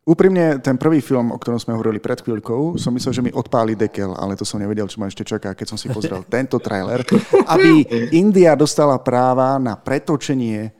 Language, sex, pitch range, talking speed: Slovak, male, 115-140 Hz, 200 wpm